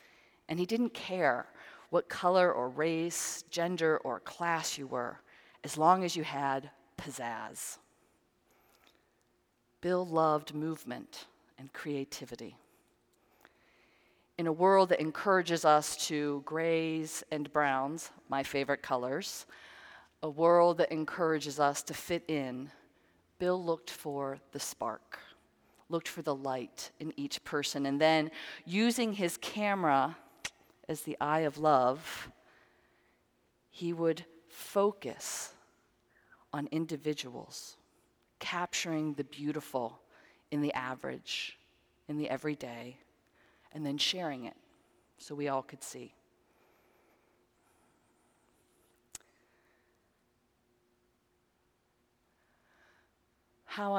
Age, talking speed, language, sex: 40-59, 100 wpm, English, female